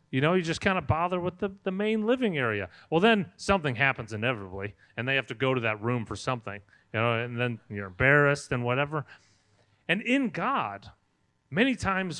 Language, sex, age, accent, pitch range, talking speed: English, male, 30-49, American, 110-180 Hz, 200 wpm